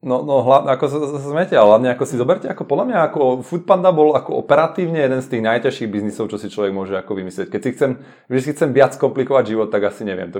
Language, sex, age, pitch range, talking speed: Czech, male, 30-49, 120-155 Hz, 210 wpm